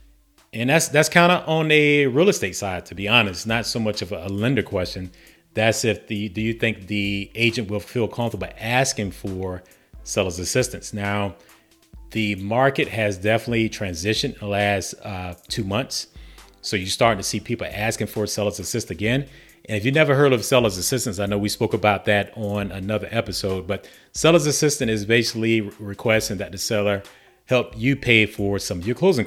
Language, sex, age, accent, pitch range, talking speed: English, male, 30-49, American, 100-120 Hz, 190 wpm